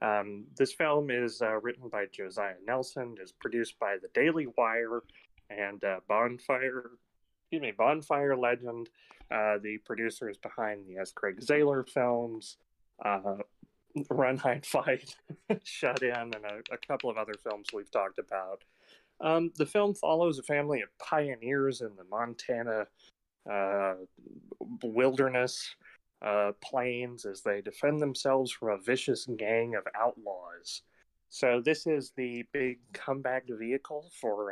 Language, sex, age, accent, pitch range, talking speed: English, male, 30-49, American, 105-135 Hz, 140 wpm